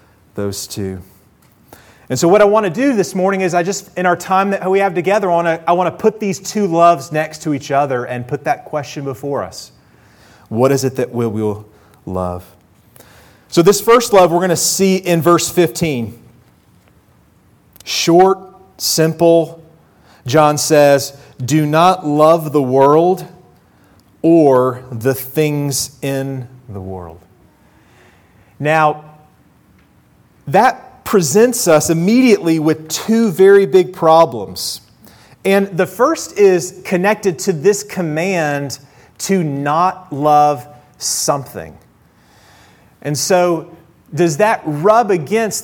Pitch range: 135-185 Hz